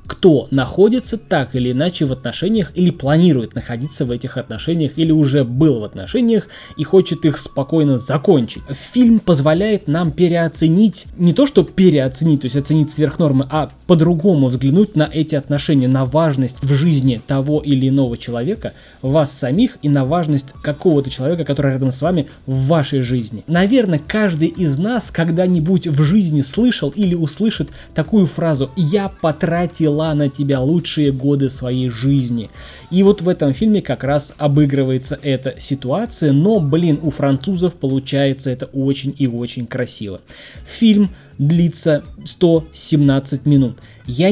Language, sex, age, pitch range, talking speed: Russian, male, 20-39, 135-180 Hz, 150 wpm